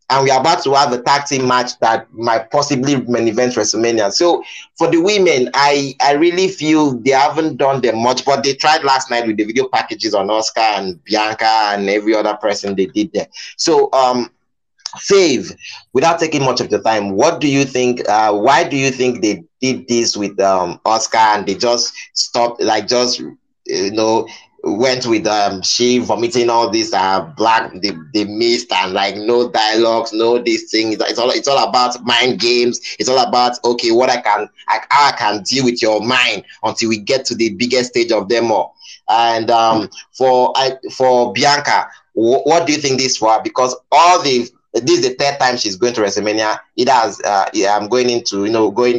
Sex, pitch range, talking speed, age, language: male, 110-135 Hz, 205 wpm, 30-49, English